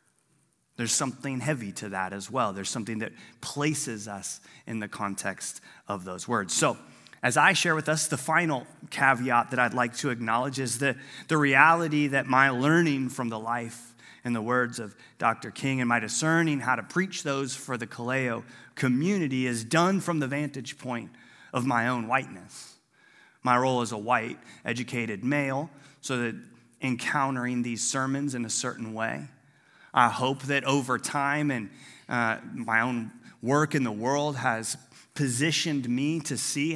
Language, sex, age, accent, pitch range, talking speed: English, male, 30-49, American, 120-145 Hz, 170 wpm